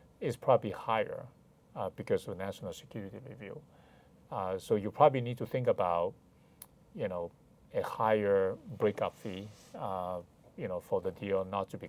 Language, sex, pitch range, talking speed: English, male, 95-120 Hz, 165 wpm